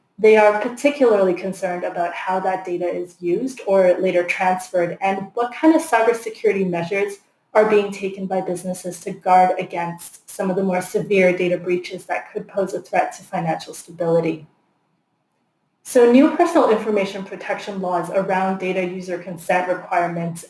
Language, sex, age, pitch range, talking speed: English, female, 20-39, 180-210 Hz, 155 wpm